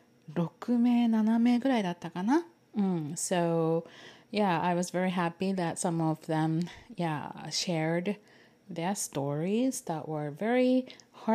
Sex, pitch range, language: female, 155-190 Hz, Japanese